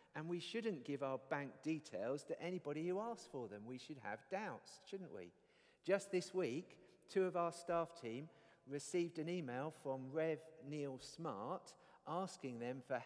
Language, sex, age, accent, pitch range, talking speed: English, male, 50-69, British, 135-180 Hz, 170 wpm